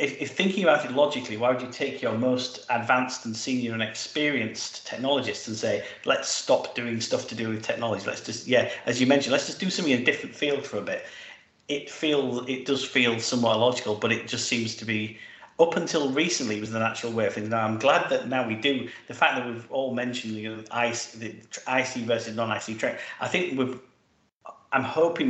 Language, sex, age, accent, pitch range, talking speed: English, male, 40-59, British, 110-125 Hz, 220 wpm